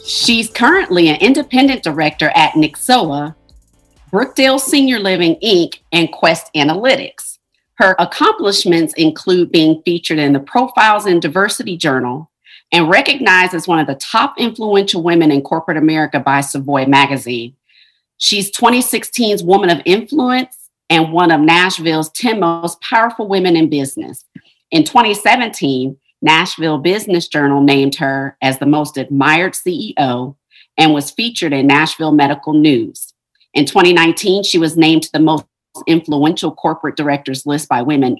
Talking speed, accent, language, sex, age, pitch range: 140 wpm, American, English, female, 40-59, 155-230 Hz